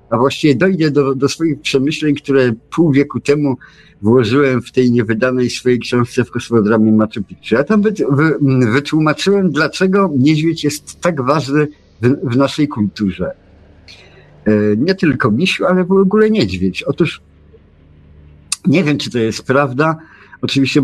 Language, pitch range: Polish, 115-155 Hz